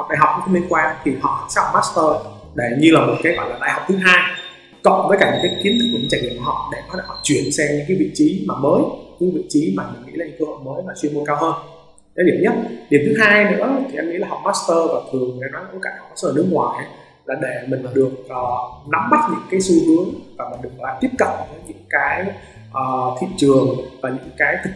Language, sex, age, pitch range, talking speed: Vietnamese, male, 20-39, 145-195 Hz, 255 wpm